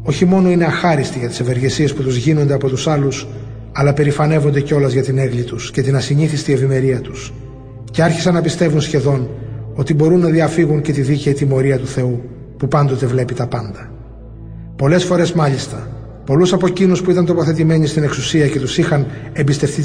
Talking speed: 180 wpm